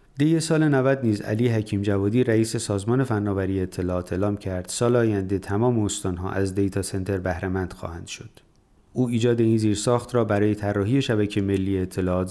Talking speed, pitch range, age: 165 wpm, 100-120 Hz, 30-49